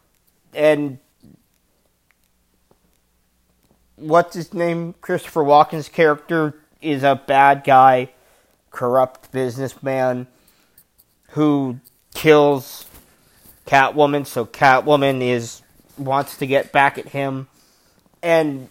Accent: American